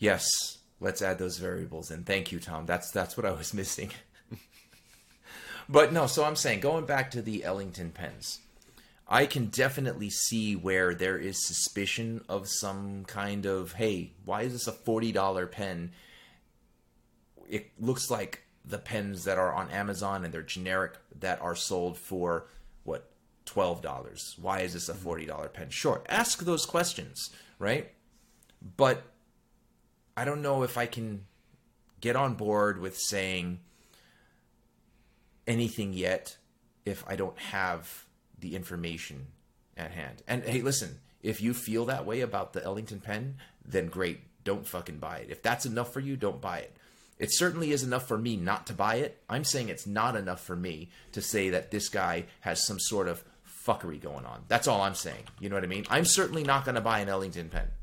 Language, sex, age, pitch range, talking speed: English, male, 30-49, 90-120 Hz, 175 wpm